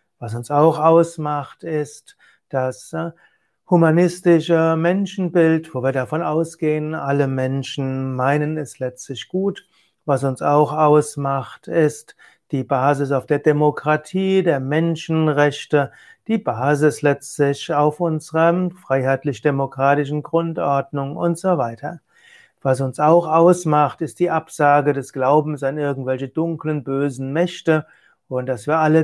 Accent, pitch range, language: German, 135-165 Hz, German